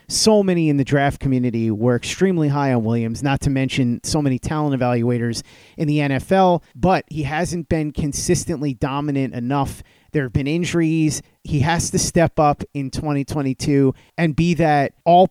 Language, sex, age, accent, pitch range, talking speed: English, male, 30-49, American, 135-170 Hz, 170 wpm